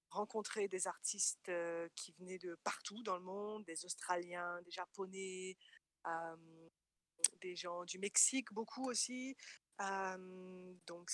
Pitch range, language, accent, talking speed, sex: 180-215 Hz, French, French, 130 wpm, female